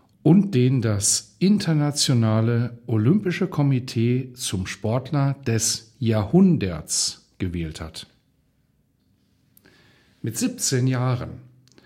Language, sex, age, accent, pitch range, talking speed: German, male, 50-69, German, 115-145 Hz, 75 wpm